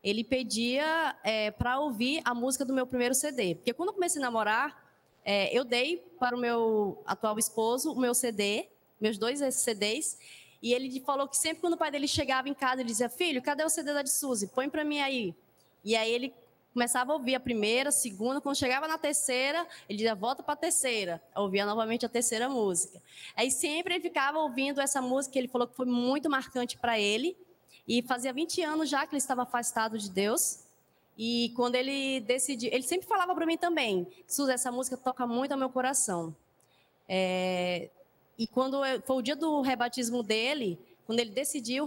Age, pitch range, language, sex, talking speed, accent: 20-39, 225-275 Hz, Portuguese, female, 200 wpm, Brazilian